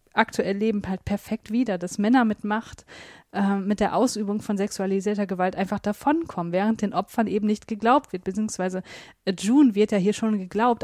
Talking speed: 175 wpm